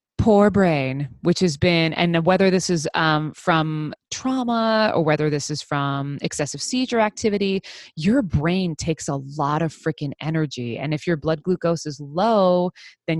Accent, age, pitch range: American, 20-39, 150-195 Hz